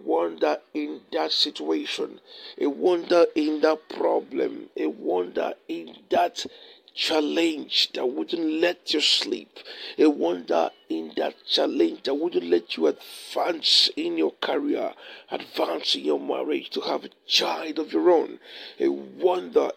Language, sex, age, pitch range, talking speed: English, male, 50-69, 290-435 Hz, 135 wpm